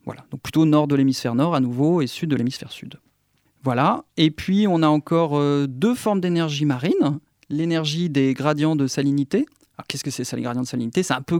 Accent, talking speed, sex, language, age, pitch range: French, 220 wpm, male, French, 40-59, 140-170 Hz